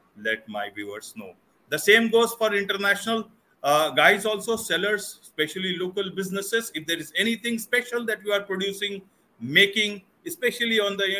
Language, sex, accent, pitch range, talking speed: English, male, Indian, 125-200 Hz, 160 wpm